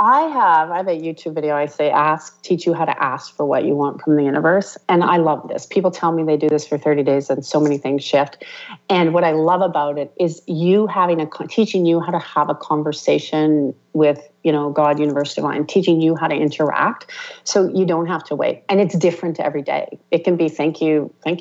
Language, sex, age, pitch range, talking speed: English, female, 40-59, 150-195 Hz, 240 wpm